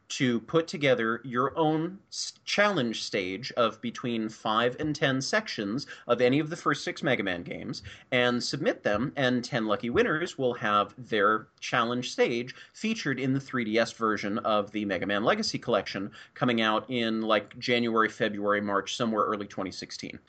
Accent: American